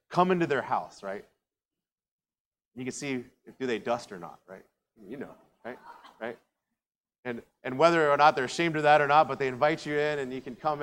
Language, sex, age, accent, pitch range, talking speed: English, male, 30-49, American, 115-155 Hz, 215 wpm